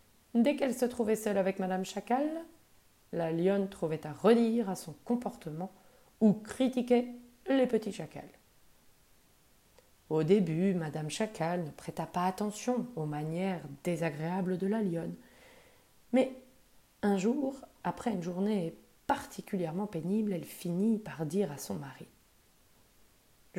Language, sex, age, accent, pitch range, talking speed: French, female, 30-49, French, 170-225 Hz, 130 wpm